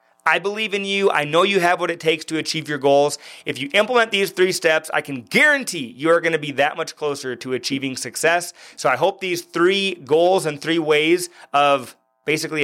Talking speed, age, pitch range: 215 wpm, 30-49, 140-175 Hz